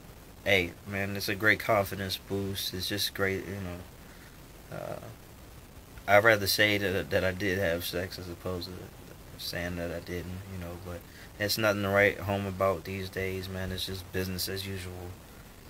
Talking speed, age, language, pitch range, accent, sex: 175 wpm, 30-49, English, 90-100 Hz, American, male